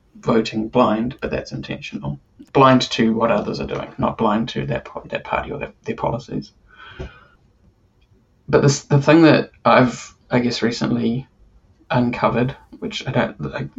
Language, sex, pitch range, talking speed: English, male, 110-130 Hz, 155 wpm